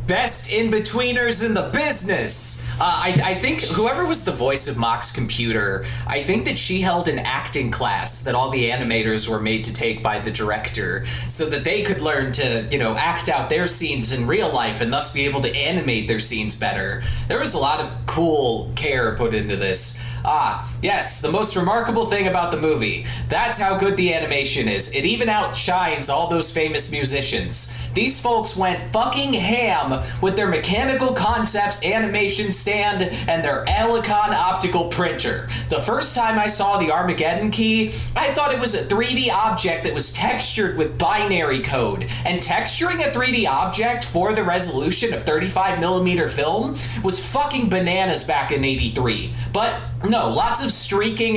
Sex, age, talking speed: male, 30-49, 175 wpm